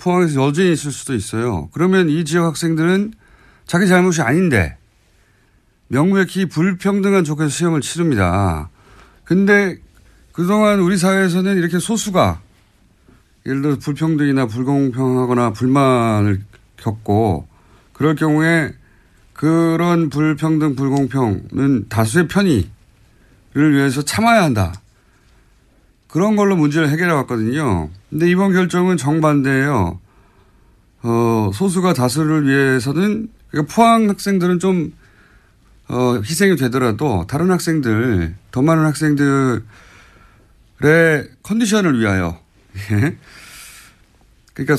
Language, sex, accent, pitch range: Korean, male, native, 110-170 Hz